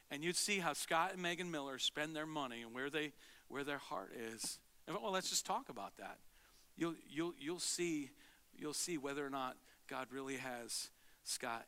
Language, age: English, 50-69